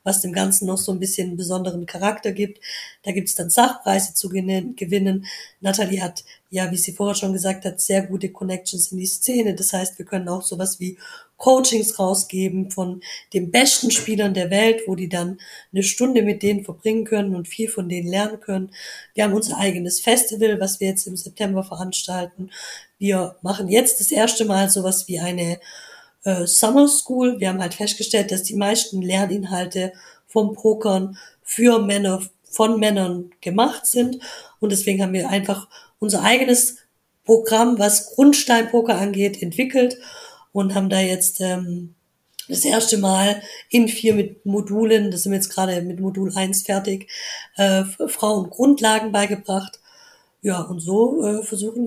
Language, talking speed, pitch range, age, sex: German, 170 wpm, 190-220 Hz, 20-39, female